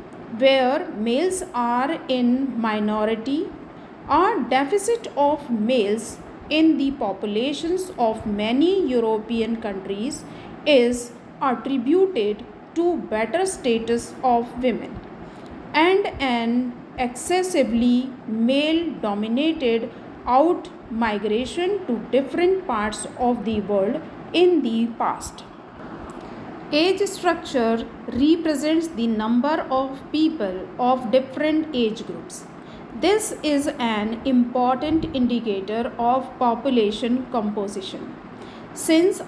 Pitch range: 230-305 Hz